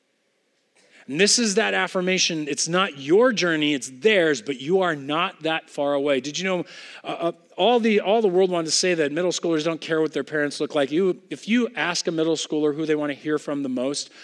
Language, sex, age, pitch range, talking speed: English, male, 40-59, 155-200 Hz, 230 wpm